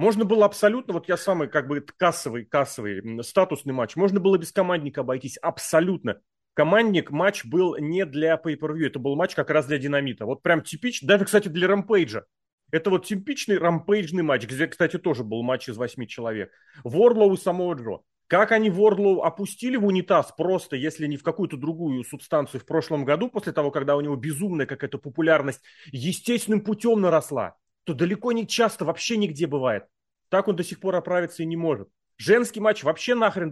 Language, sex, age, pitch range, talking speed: Russian, male, 30-49, 140-190 Hz, 185 wpm